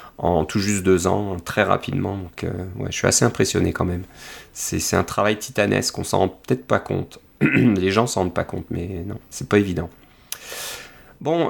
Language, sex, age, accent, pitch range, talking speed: French, male, 30-49, French, 95-125 Hz, 190 wpm